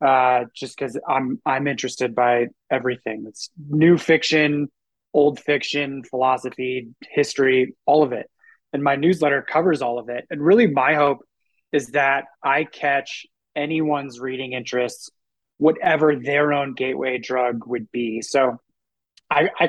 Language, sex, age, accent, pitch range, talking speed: English, male, 20-39, American, 130-155 Hz, 130 wpm